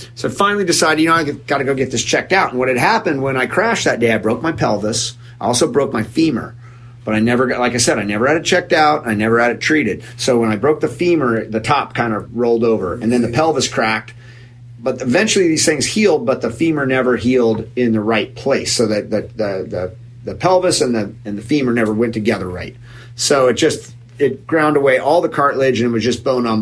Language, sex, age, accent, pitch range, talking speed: English, male, 30-49, American, 110-130 Hz, 250 wpm